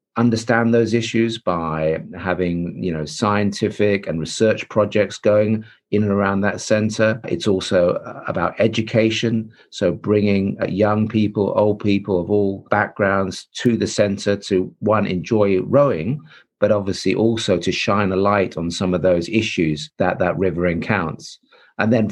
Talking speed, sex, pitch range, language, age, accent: 150 wpm, male, 90-110 Hz, English, 50-69, British